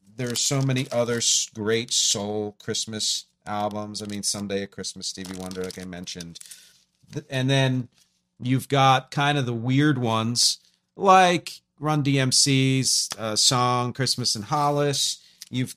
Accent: American